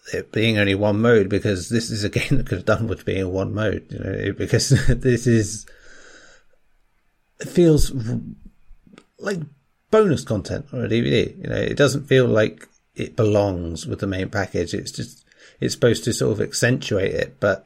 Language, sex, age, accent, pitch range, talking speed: English, male, 30-49, British, 100-130 Hz, 180 wpm